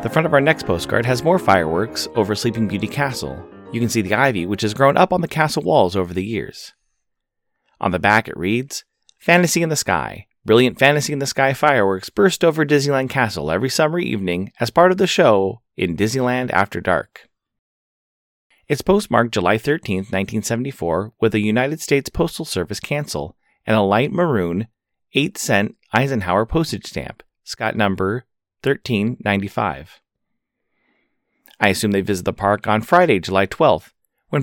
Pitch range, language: 100-145 Hz, English